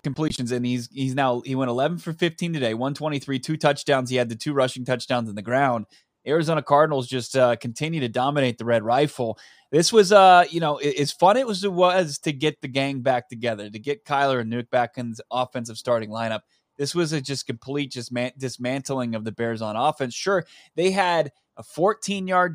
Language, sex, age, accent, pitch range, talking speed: English, male, 20-39, American, 125-155 Hz, 210 wpm